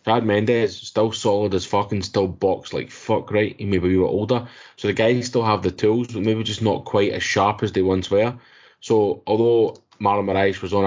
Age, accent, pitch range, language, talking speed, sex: 20-39, British, 95-115 Hz, English, 225 wpm, male